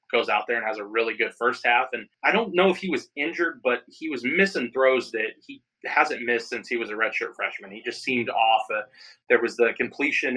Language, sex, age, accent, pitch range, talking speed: English, male, 30-49, American, 115-140 Hz, 245 wpm